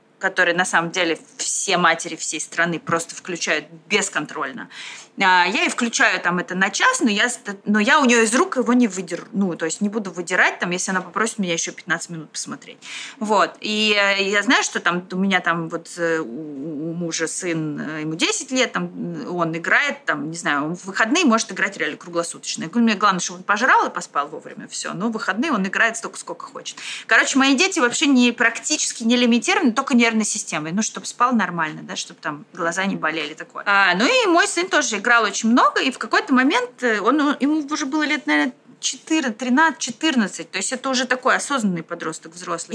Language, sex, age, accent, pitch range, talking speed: Russian, female, 20-39, native, 175-255 Hz, 200 wpm